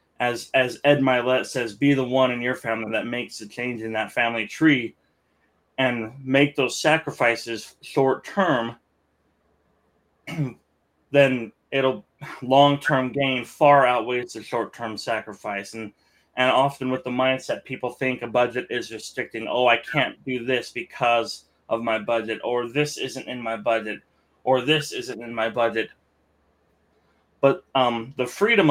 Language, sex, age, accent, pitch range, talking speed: English, male, 20-39, American, 115-135 Hz, 155 wpm